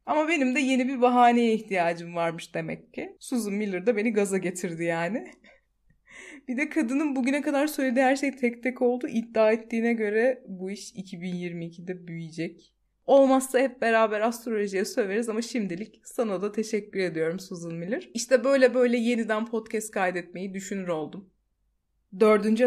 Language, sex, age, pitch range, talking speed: Turkish, female, 30-49, 205-270 Hz, 150 wpm